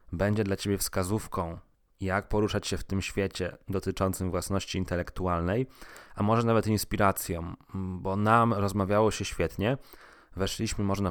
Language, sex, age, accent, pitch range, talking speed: Polish, male, 20-39, native, 95-115 Hz, 130 wpm